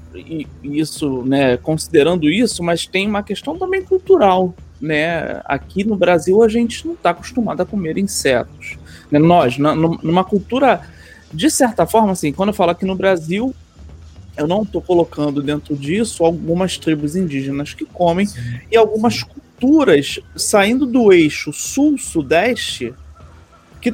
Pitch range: 155-225 Hz